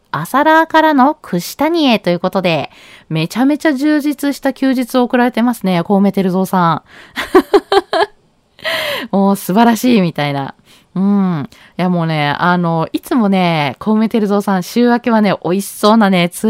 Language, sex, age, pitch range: Japanese, female, 20-39, 185-260 Hz